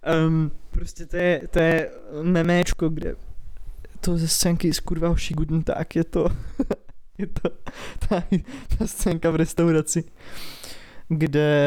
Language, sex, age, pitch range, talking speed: Czech, male, 20-39, 155-170 Hz, 120 wpm